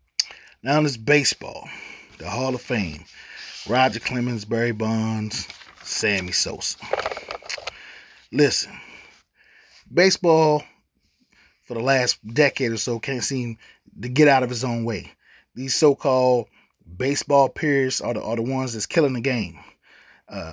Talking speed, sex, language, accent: 130 wpm, male, English, American